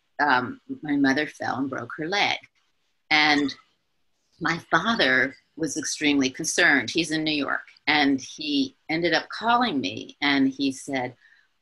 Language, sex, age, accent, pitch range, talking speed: English, female, 40-59, American, 135-185 Hz, 140 wpm